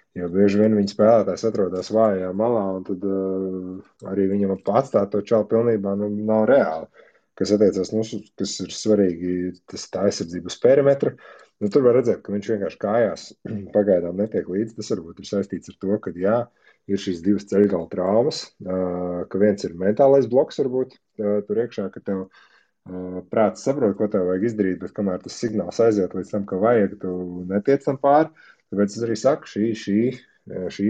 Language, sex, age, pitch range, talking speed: English, male, 20-39, 95-110 Hz, 170 wpm